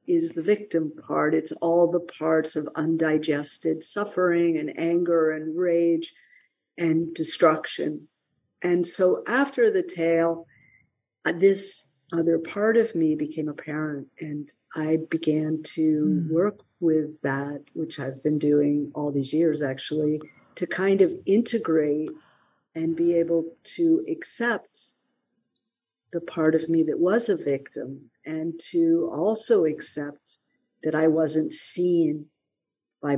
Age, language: 50-69, English